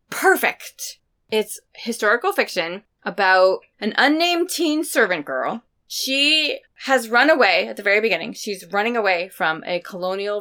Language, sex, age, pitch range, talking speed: English, female, 20-39, 175-255 Hz, 140 wpm